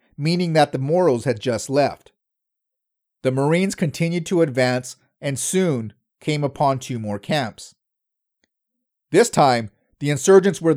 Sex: male